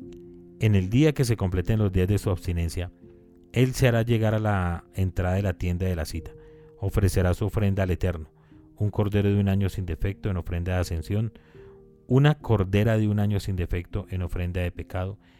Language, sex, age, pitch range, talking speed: Spanish, male, 30-49, 90-105 Hz, 200 wpm